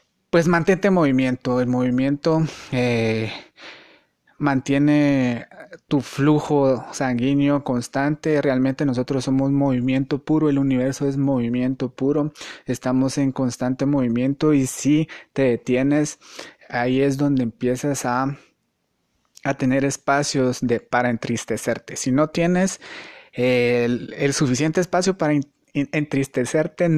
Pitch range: 125-145 Hz